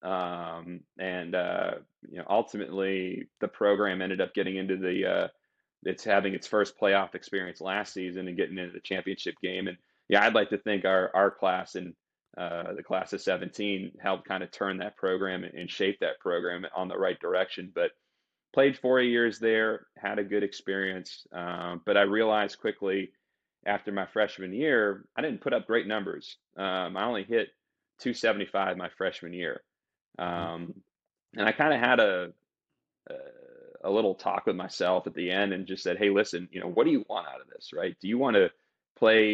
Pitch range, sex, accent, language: 95-110 Hz, male, American, English